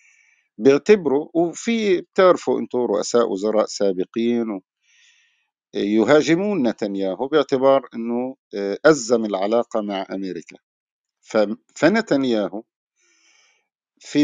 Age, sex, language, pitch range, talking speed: 50-69, male, Arabic, 100-135 Hz, 70 wpm